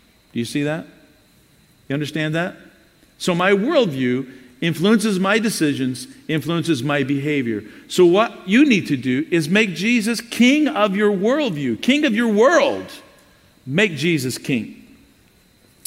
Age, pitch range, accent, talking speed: 50-69, 125-170 Hz, American, 130 wpm